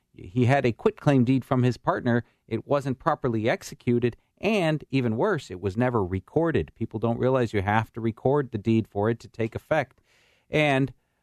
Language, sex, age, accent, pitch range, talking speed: English, male, 40-59, American, 100-125 Hz, 180 wpm